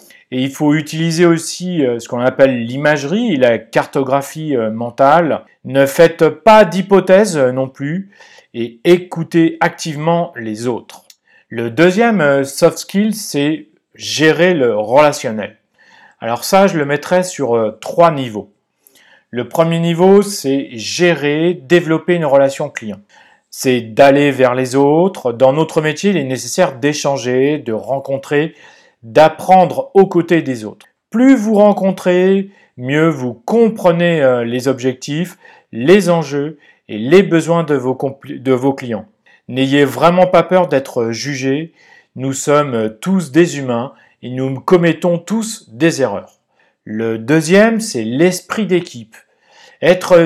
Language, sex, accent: French, male, French